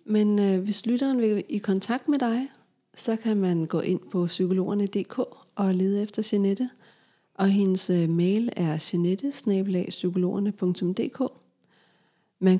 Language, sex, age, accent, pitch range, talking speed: Danish, female, 40-59, native, 180-215 Hz, 130 wpm